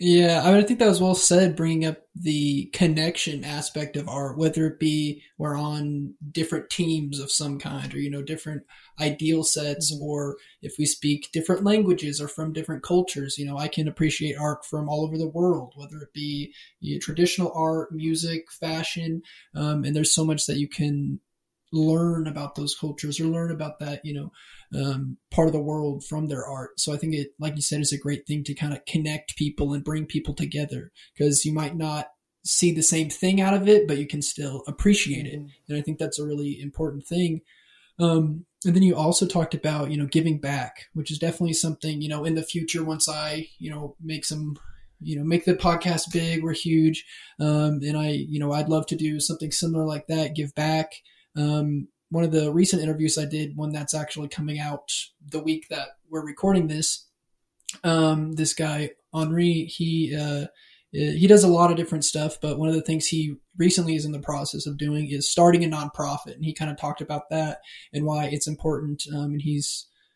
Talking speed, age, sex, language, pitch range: 210 wpm, 20-39, male, English, 150-160 Hz